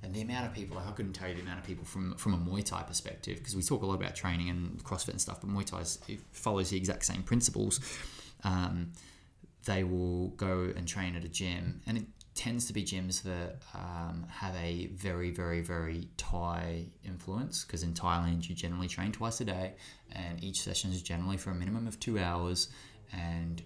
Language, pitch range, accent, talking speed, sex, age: English, 90-105 Hz, Australian, 215 wpm, male, 20-39